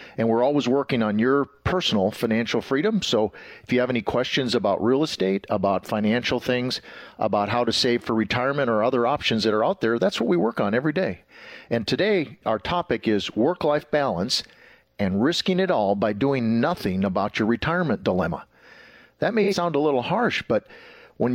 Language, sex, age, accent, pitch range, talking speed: English, male, 50-69, American, 110-140 Hz, 190 wpm